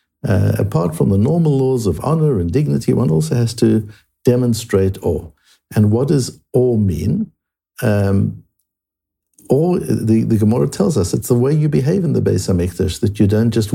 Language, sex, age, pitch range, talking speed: English, male, 60-79, 95-120 Hz, 175 wpm